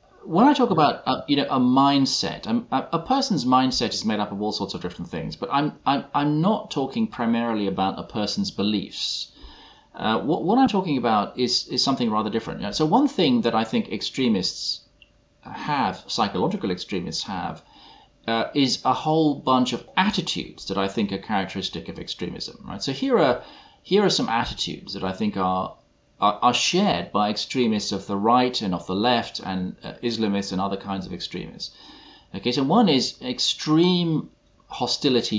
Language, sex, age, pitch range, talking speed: English, male, 30-49, 100-135 Hz, 180 wpm